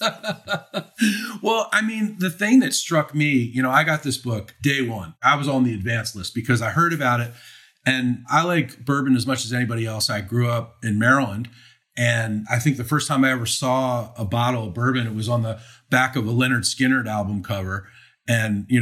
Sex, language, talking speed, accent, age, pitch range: male, English, 215 wpm, American, 40-59, 115-145 Hz